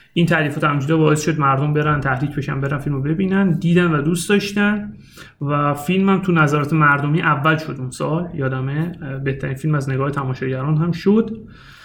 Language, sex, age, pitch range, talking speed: Persian, male, 30-49, 145-175 Hz, 165 wpm